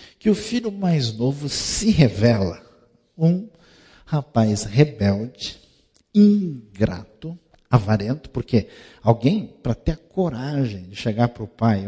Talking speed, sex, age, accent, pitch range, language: 115 wpm, male, 50-69, Brazilian, 110-150 Hz, Portuguese